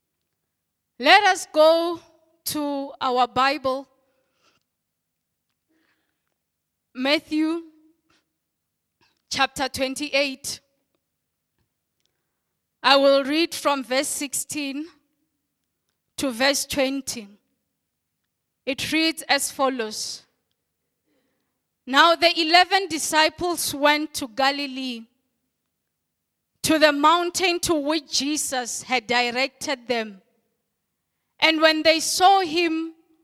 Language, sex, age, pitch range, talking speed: English, female, 20-39, 260-320 Hz, 80 wpm